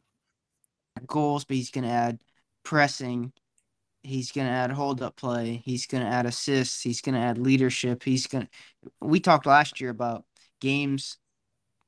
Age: 20-39